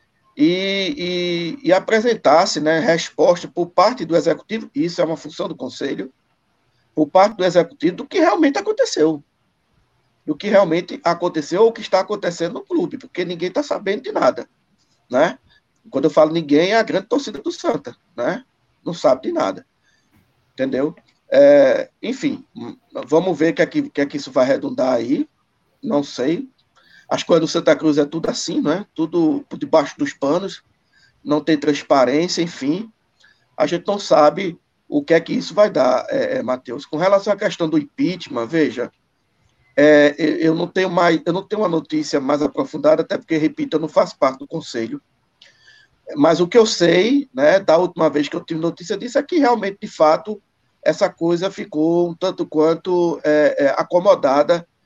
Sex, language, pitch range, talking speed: male, Portuguese, 155-240 Hz, 165 wpm